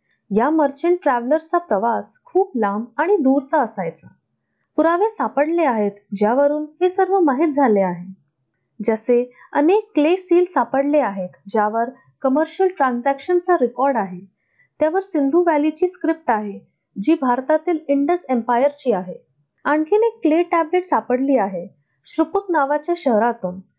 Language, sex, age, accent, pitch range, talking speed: Marathi, female, 20-39, native, 230-340 Hz, 100 wpm